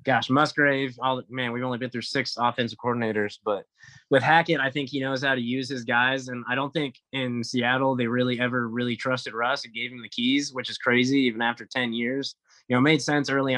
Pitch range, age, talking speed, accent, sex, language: 120-135 Hz, 20-39, 235 wpm, American, male, English